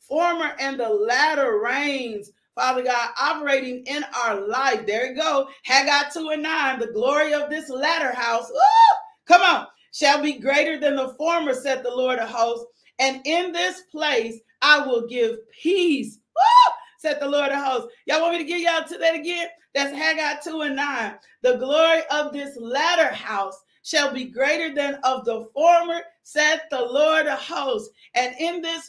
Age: 40-59